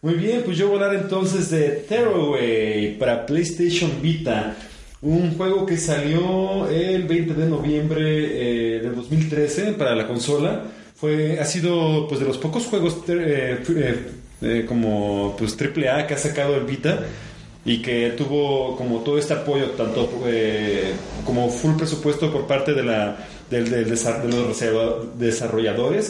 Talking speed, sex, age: 140 wpm, male, 30-49